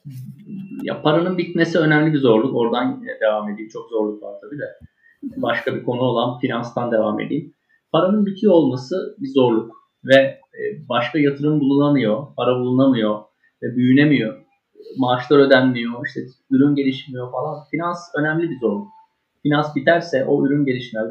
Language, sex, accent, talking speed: Turkish, male, native, 140 wpm